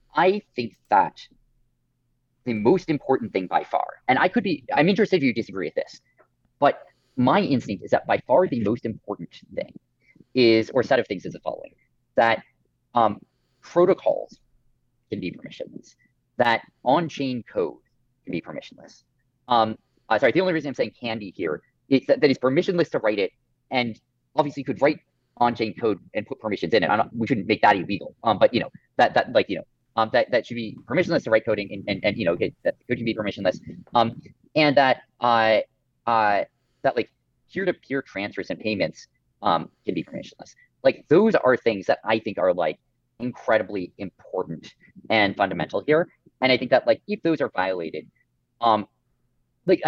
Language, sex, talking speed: English, male, 185 wpm